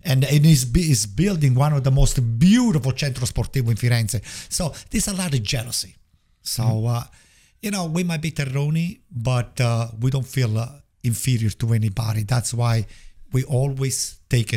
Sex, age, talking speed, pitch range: male, 50-69, 165 wpm, 120-155 Hz